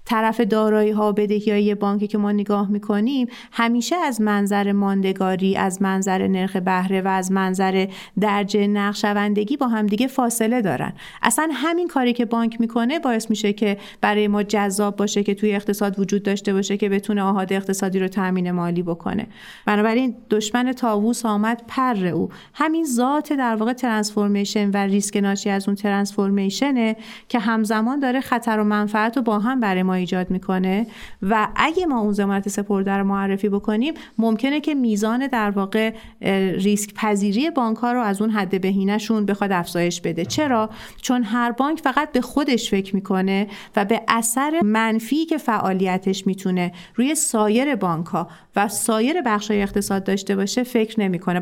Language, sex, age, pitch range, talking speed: Persian, female, 30-49, 200-235 Hz, 165 wpm